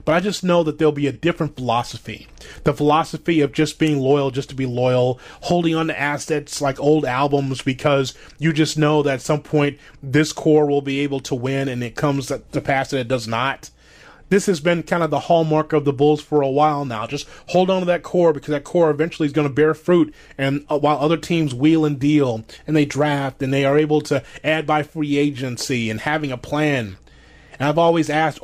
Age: 30-49